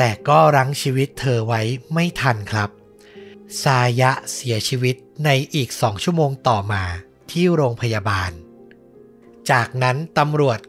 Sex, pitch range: male, 120-155 Hz